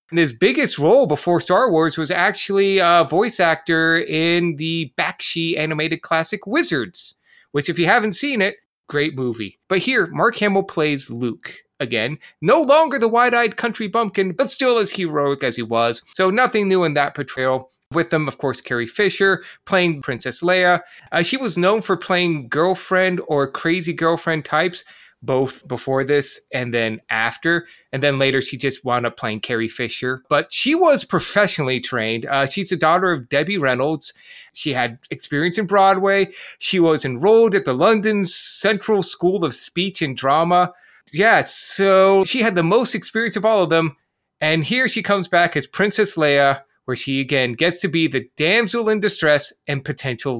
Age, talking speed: 30-49, 175 wpm